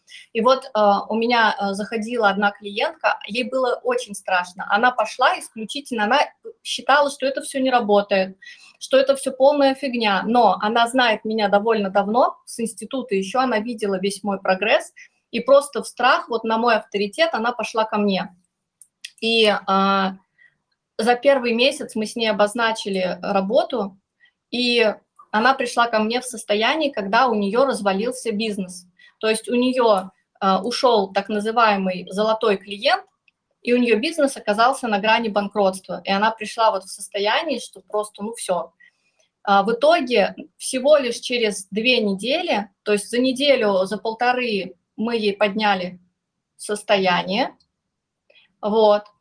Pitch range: 205-255 Hz